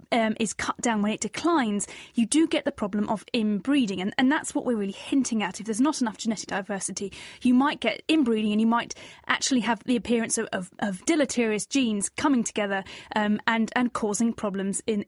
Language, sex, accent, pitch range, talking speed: English, female, British, 215-280 Hz, 205 wpm